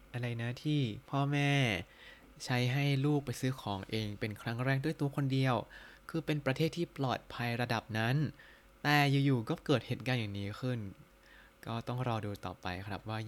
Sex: male